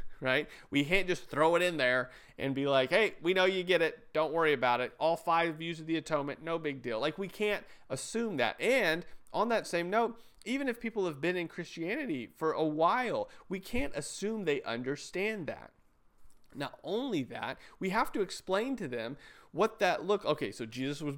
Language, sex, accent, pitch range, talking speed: English, male, American, 130-170 Hz, 205 wpm